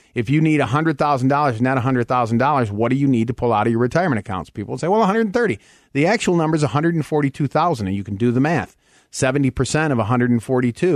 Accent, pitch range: American, 120-155 Hz